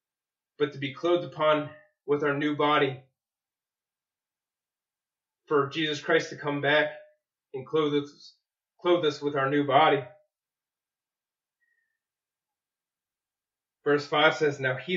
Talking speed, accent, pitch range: 115 wpm, American, 135-155 Hz